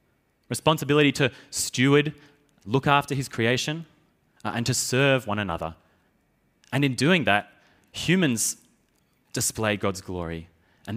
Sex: male